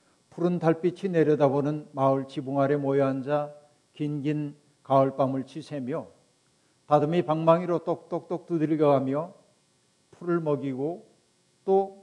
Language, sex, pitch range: Korean, male, 140-165 Hz